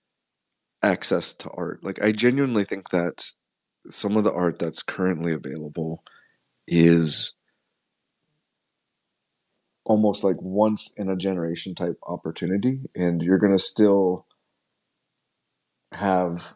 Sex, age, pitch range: male, 30-49, 90-105 Hz